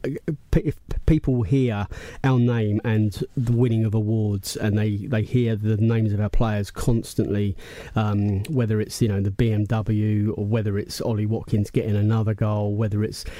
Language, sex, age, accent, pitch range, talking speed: English, male, 30-49, British, 105-115 Hz, 165 wpm